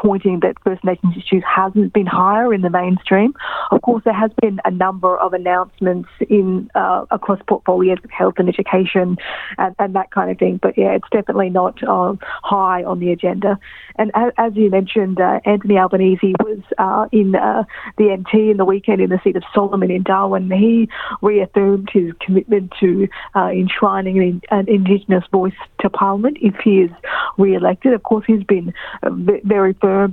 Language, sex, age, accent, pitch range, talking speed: English, female, 40-59, Australian, 185-205 Hz, 180 wpm